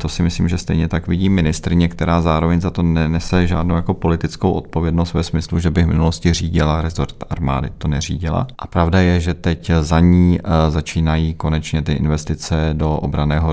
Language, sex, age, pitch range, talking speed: Czech, male, 40-59, 75-90 Hz, 180 wpm